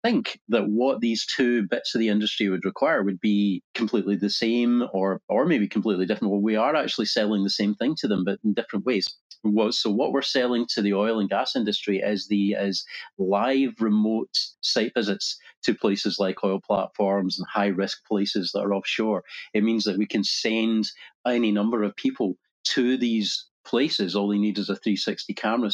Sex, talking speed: male, 200 wpm